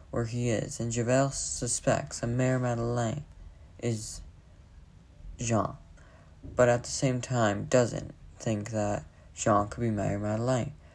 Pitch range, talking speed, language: 90-130 Hz, 130 wpm, English